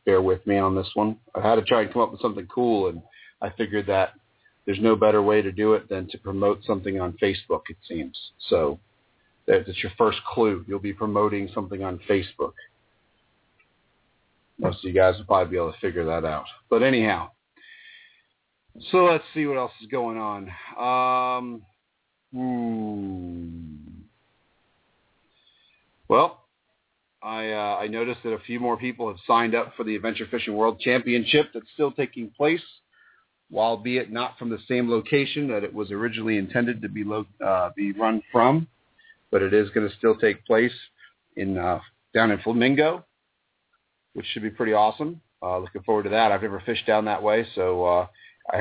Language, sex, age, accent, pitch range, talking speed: English, male, 40-59, American, 100-125 Hz, 175 wpm